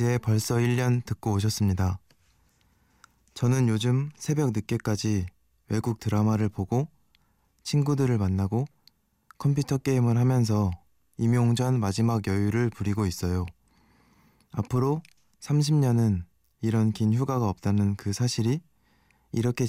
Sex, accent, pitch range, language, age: male, native, 105-125 Hz, Korean, 20-39